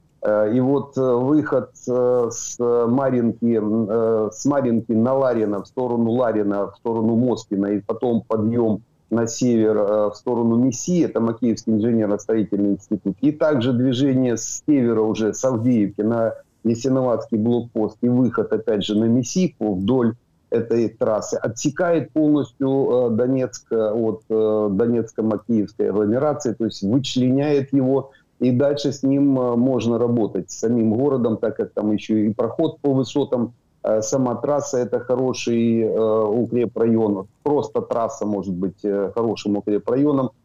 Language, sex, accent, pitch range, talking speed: Ukrainian, male, native, 110-130 Hz, 130 wpm